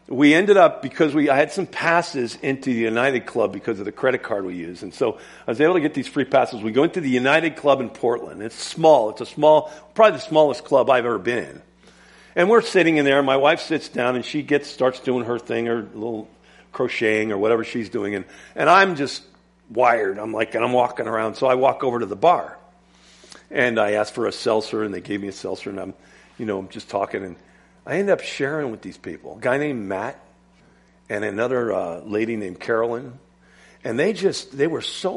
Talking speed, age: 230 wpm, 50-69